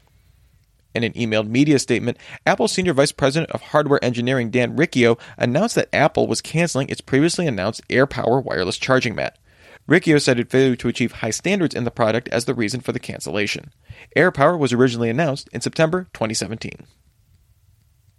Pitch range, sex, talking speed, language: 115-145 Hz, male, 160 wpm, English